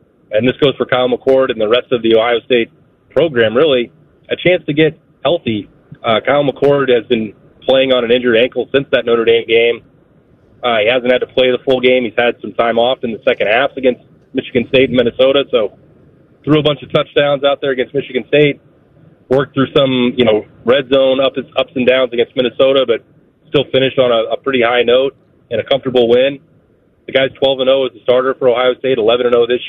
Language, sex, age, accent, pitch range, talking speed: English, male, 30-49, American, 125-140 Hz, 220 wpm